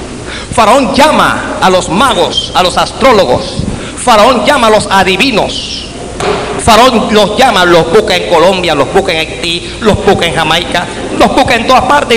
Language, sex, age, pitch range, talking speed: Spanish, male, 50-69, 185-240 Hz, 170 wpm